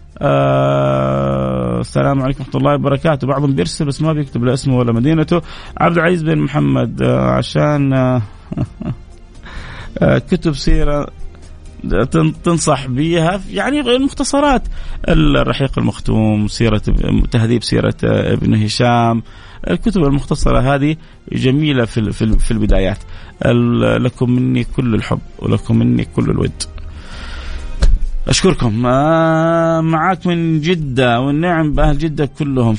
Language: Arabic